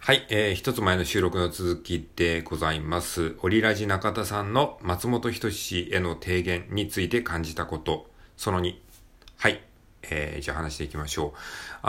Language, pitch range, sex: Japanese, 80-105 Hz, male